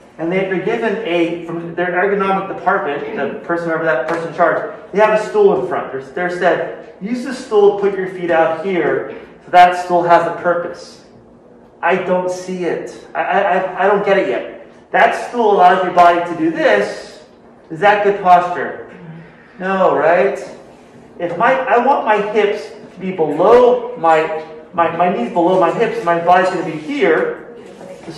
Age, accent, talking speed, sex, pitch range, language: 30-49, American, 180 wpm, male, 170-195 Hz, English